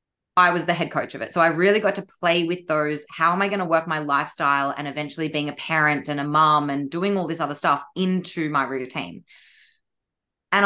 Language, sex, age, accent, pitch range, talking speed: English, female, 20-39, Australian, 155-200 Hz, 230 wpm